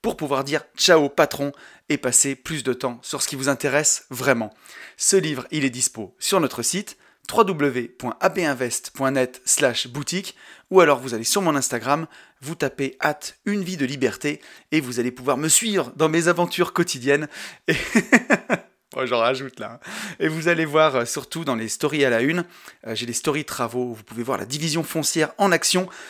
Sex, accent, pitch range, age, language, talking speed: male, French, 125-155 Hz, 30-49, French, 185 wpm